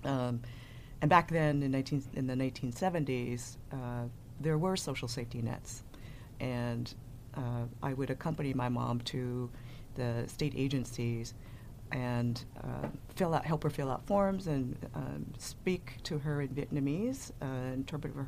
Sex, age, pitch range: female, 40-59, 120-135 Hz